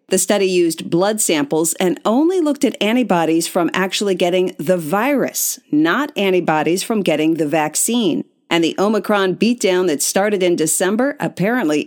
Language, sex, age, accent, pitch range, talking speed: English, female, 40-59, American, 170-250 Hz, 150 wpm